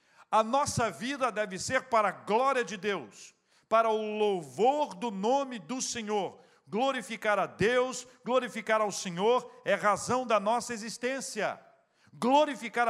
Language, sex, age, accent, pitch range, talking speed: Portuguese, male, 50-69, Brazilian, 175-230 Hz, 135 wpm